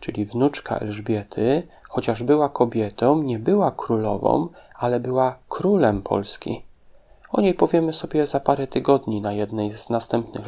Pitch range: 115-145 Hz